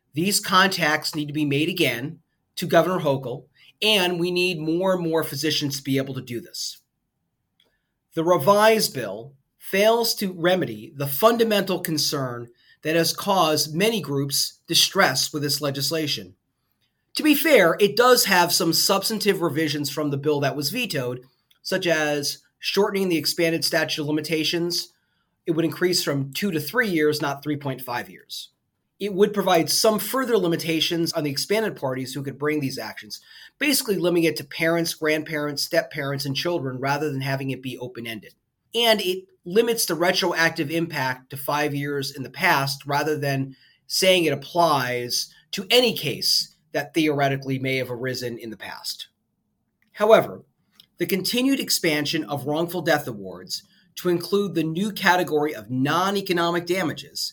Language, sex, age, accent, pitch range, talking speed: English, male, 30-49, American, 140-180 Hz, 155 wpm